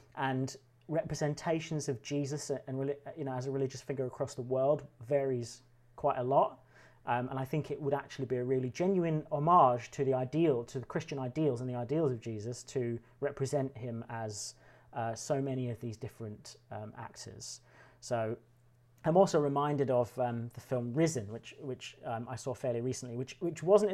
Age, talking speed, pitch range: 30-49, 185 wpm, 120-145 Hz